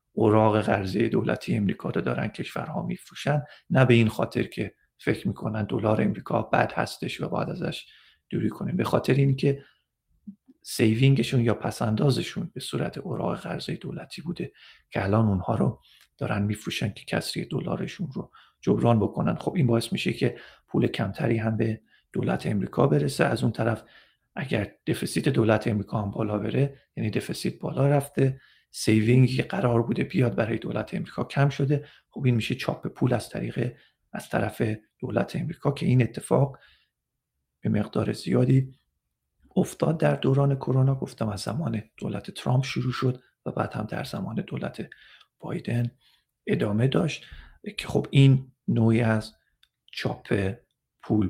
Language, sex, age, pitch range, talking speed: Persian, male, 40-59, 110-140 Hz, 145 wpm